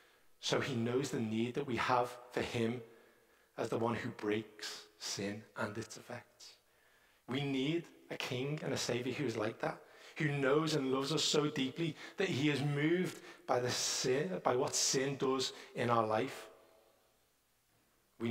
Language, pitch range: English, 110-135 Hz